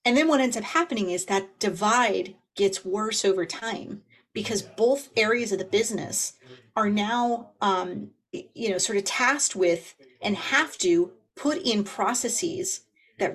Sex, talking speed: female, 155 wpm